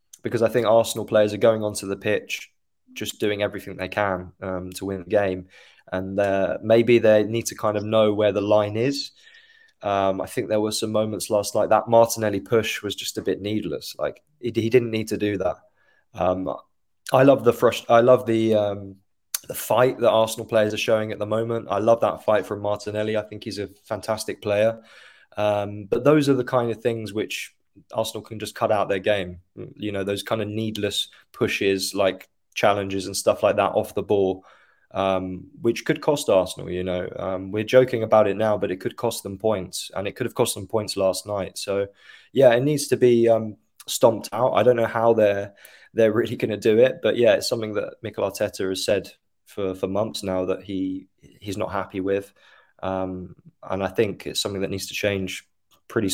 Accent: British